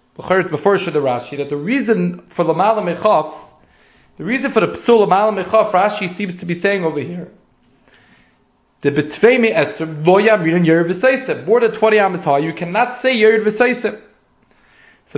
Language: English